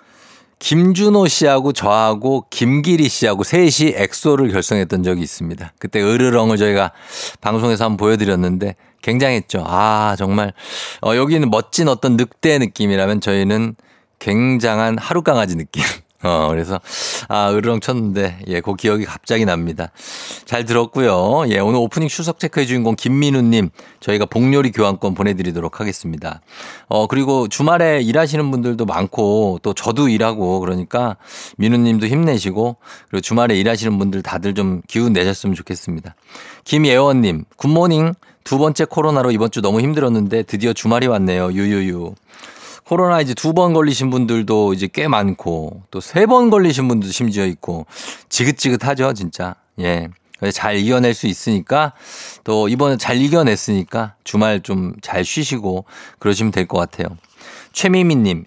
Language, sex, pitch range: Korean, male, 100-135 Hz